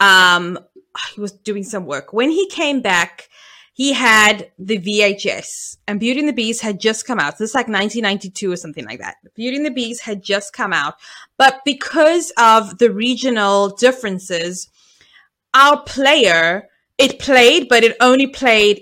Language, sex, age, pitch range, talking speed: English, female, 20-39, 205-265 Hz, 170 wpm